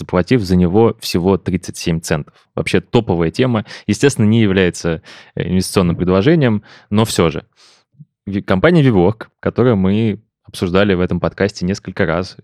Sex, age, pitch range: male, 20-39, 90-115 Hz